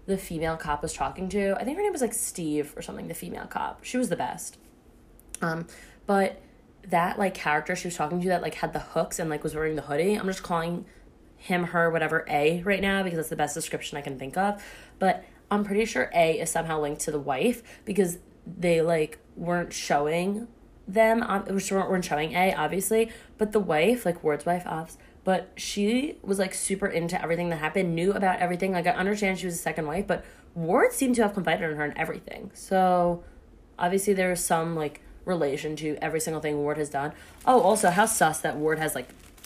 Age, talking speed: 20-39, 215 wpm